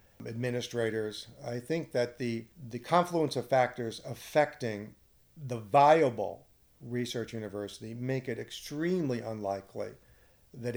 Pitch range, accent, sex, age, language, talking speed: 110-140 Hz, American, male, 50-69, English, 105 wpm